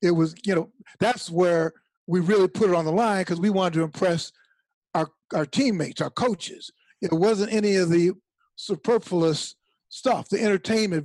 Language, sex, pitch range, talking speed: English, male, 170-220 Hz, 175 wpm